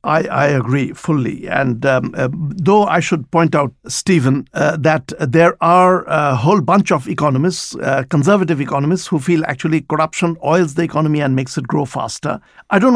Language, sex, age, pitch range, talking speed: English, male, 60-79, 150-190 Hz, 180 wpm